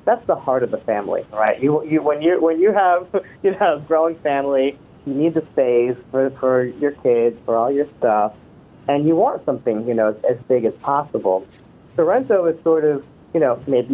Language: English